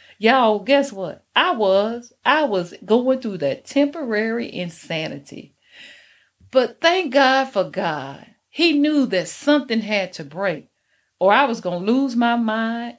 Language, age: English, 40-59